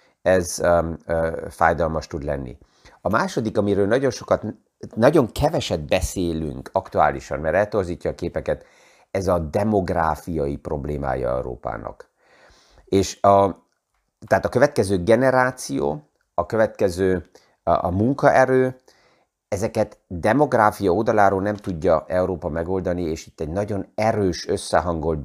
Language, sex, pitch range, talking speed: Hungarian, male, 80-105 Hz, 110 wpm